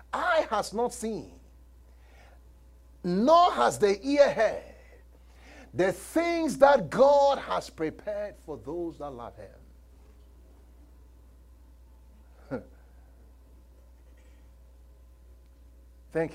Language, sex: English, male